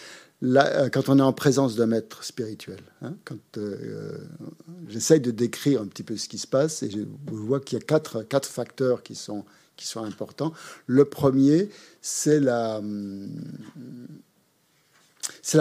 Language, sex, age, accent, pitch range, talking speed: French, male, 50-69, French, 115-140 Hz, 165 wpm